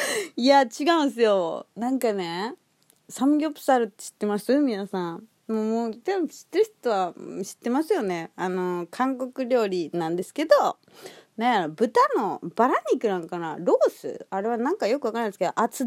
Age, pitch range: 30-49, 175-255 Hz